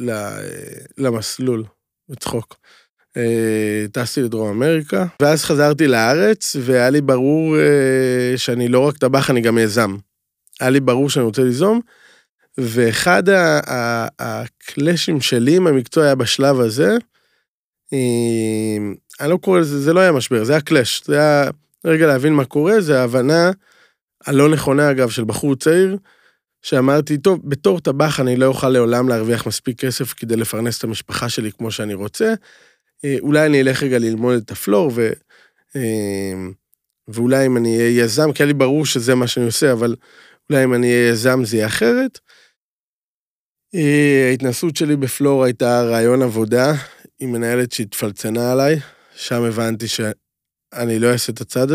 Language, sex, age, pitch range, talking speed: Hebrew, male, 20-39, 115-150 Hz, 145 wpm